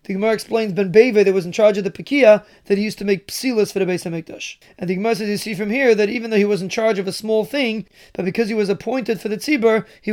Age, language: 30-49, English